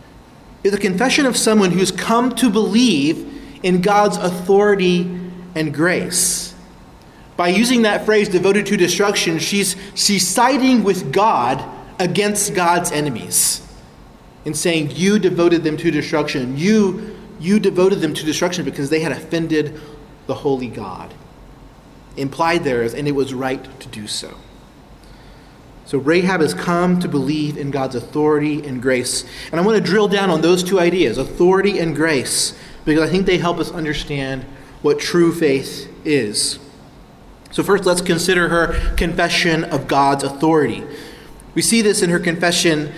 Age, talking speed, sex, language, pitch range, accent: 30-49, 150 wpm, male, English, 150-195 Hz, American